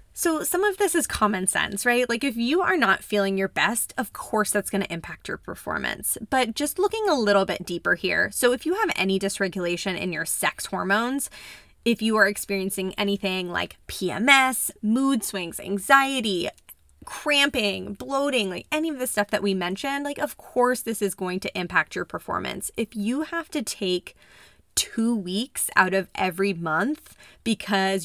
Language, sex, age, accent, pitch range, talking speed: English, female, 20-39, American, 190-240 Hz, 180 wpm